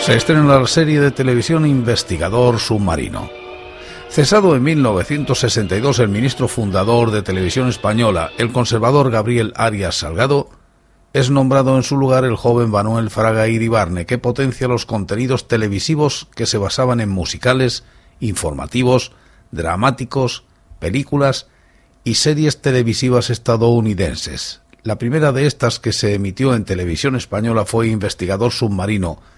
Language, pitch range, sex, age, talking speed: Spanish, 100-130 Hz, male, 50-69, 125 wpm